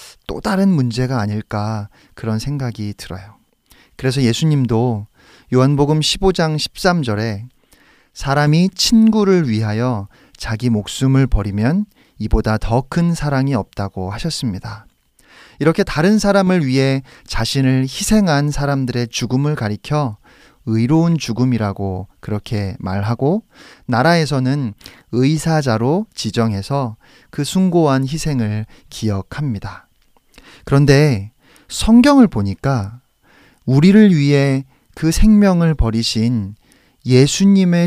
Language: Korean